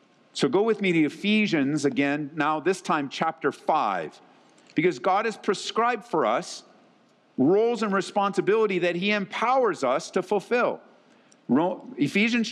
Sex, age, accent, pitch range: male, 50-69, American, 175-235 Hz